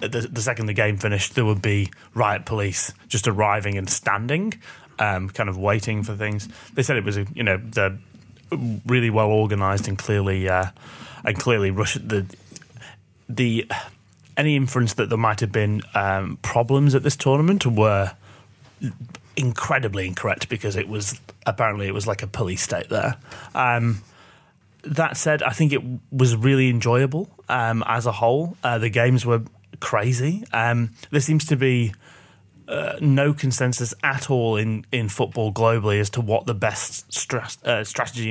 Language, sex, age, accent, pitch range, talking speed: English, male, 30-49, British, 105-130 Hz, 165 wpm